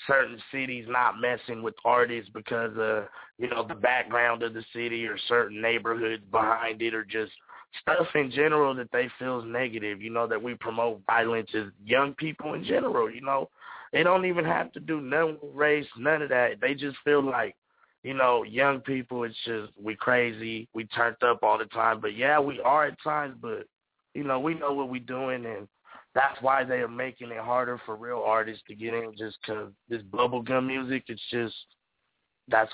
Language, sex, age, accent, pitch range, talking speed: English, male, 30-49, American, 115-130 Hz, 200 wpm